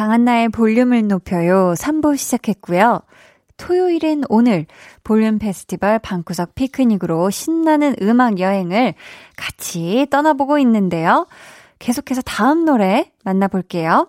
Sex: female